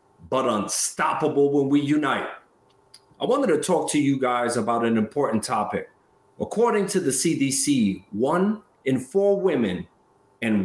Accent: American